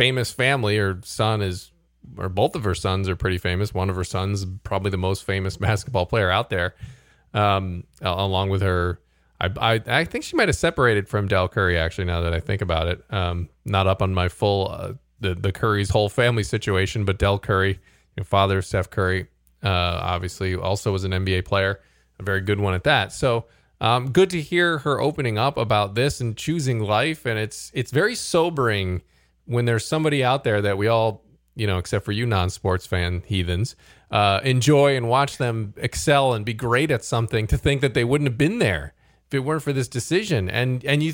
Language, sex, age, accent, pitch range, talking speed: English, male, 20-39, American, 95-130 Hz, 205 wpm